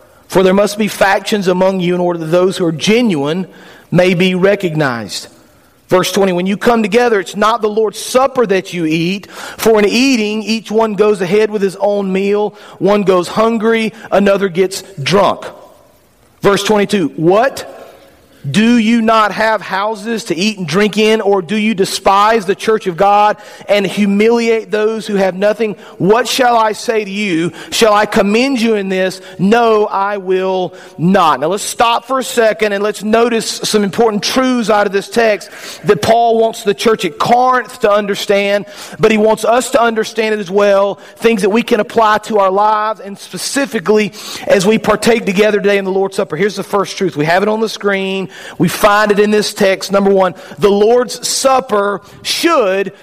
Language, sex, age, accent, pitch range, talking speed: English, male, 40-59, American, 195-220 Hz, 190 wpm